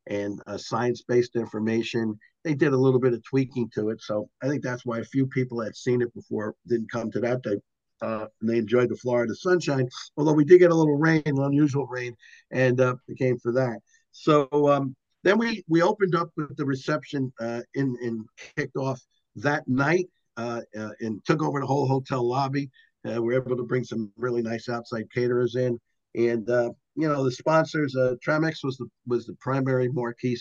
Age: 50-69